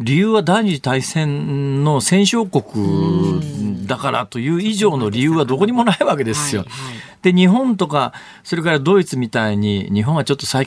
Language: Japanese